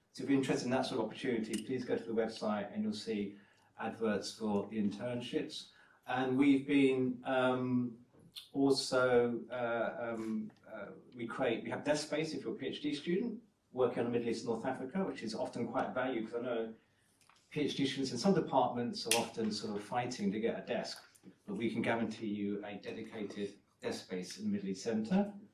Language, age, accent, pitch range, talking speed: English, 40-59, British, 115-140 Hz, 195 wpm